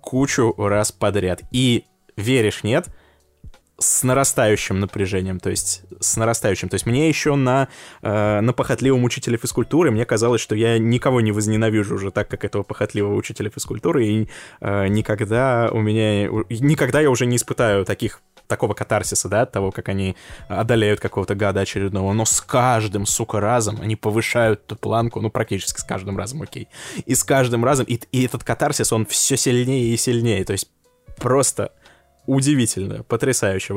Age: 20-39